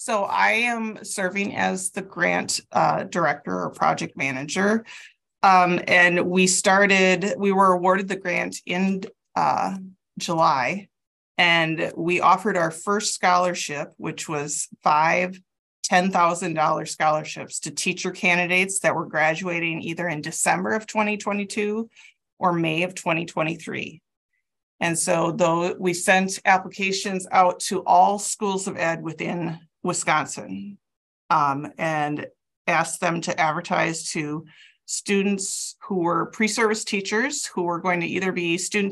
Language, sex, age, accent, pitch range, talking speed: English, female, 30-49, American, 165-200 Hz, 130 wpm